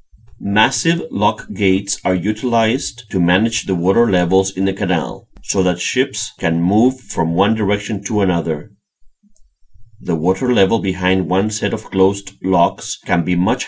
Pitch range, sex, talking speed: 95-120 Hz, male, 155 wpm